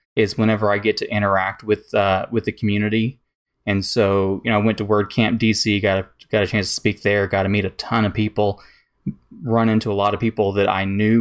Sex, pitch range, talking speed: male, 100-110 Hz, 235 wpm